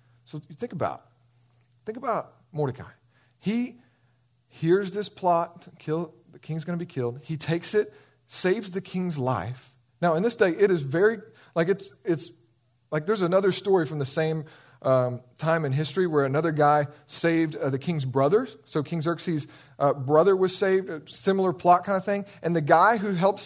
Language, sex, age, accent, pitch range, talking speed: English, male, 40-59, American, 125-185 Hz, 180 wpm